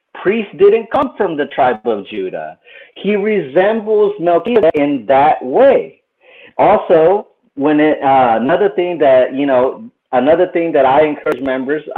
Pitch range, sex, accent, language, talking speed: 125-160 Hz, male, American, English, 145 wpm